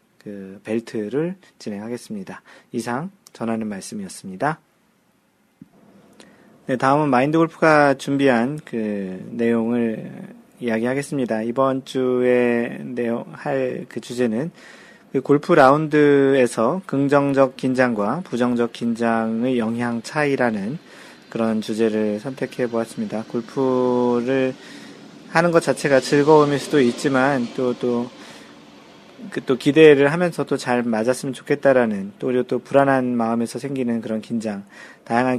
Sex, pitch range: male, 115-145 Hz